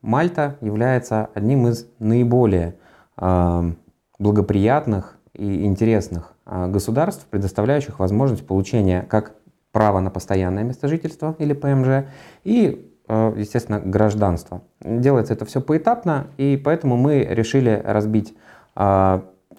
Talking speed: 105 wpm